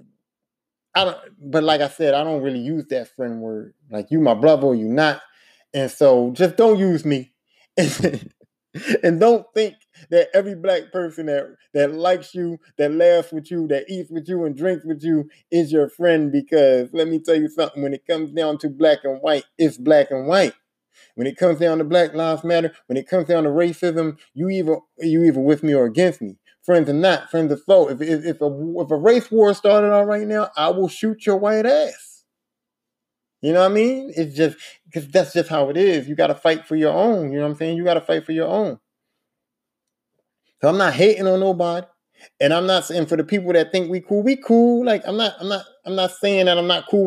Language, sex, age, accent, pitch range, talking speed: English, male, 20-39, American, 150-185 Hz, 225 wpm